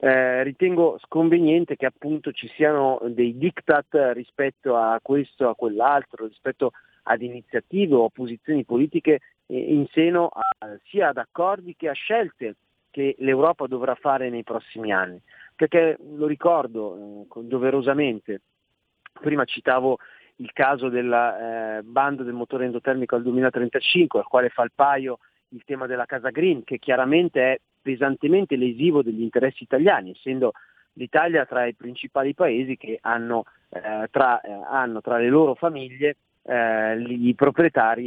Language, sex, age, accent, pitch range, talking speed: Italian, male, 40-59, native, 120-150 Hz, 140 wpm